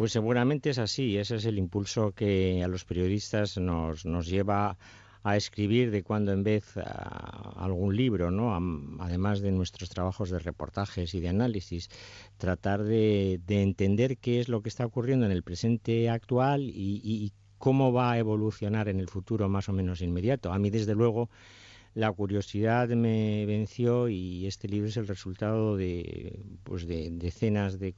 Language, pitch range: Spanish, 90-110 Hz